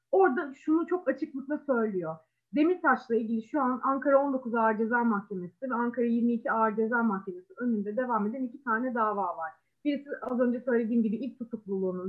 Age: 30-49